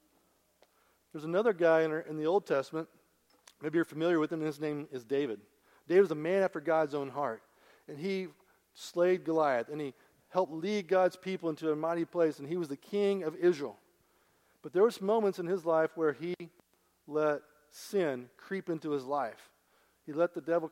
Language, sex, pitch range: English, male, 150-185 Hz